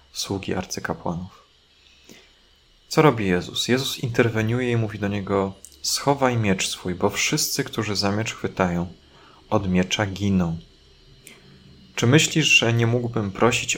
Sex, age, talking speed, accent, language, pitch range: male, 30-49, 125 wpm, native, Polish, 90-115 Hz